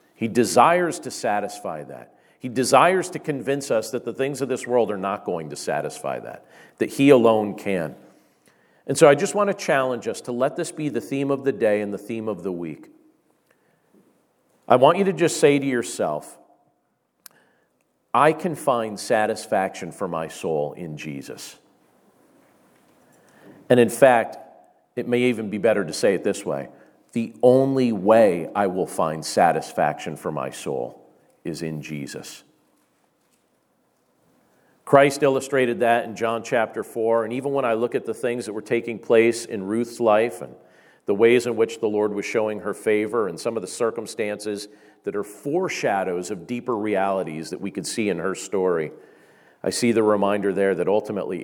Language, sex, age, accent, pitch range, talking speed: English, male, 50-69, American, 105-135 Hz, 175 wpm